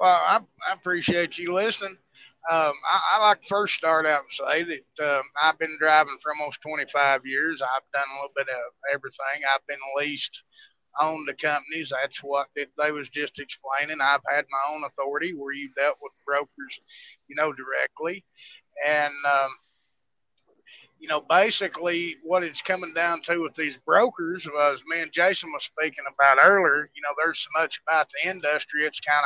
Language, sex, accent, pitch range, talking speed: English, male, American, 140-170 Hz, 180 wpm